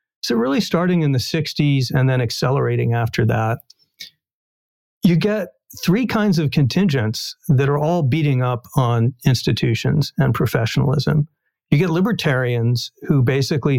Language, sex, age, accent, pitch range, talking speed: English, male, 50-69, American, 120-150 Hz, 135 wpm